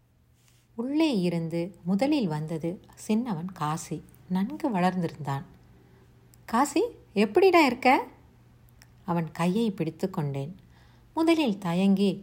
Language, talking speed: Tamil, 80 wpm